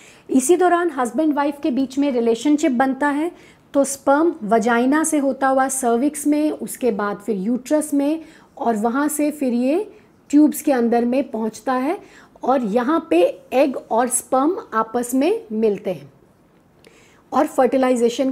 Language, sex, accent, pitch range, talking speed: Hindi, female, native, 230-275 Hz, 150 wpm